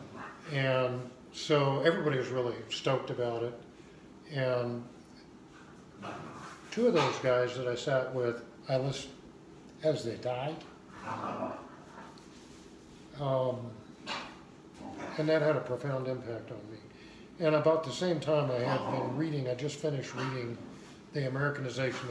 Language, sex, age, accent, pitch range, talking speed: English, male, 50-69, American, 120-135 Hz, 125 wpm